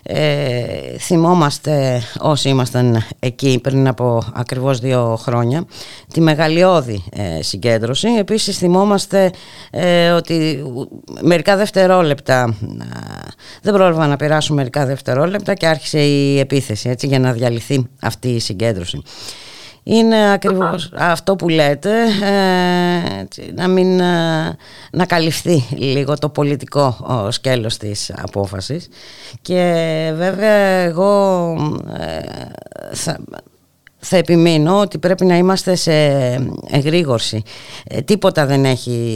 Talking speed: 95 wpm